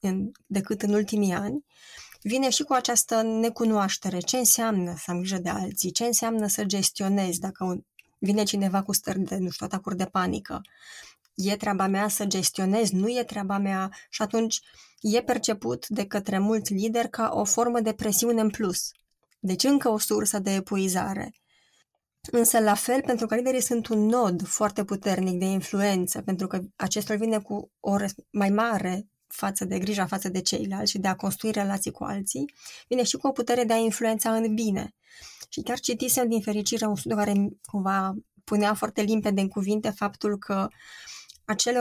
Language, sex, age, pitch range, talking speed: Romanian, female, 20-39, 195-225 Hz, 180 wpm